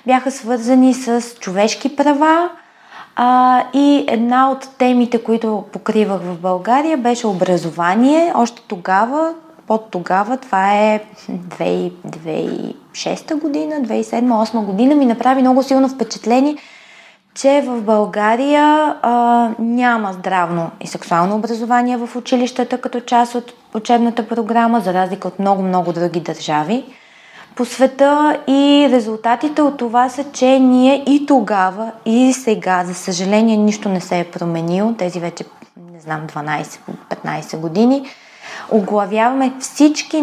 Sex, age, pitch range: female, 20-39, 185-255 Hz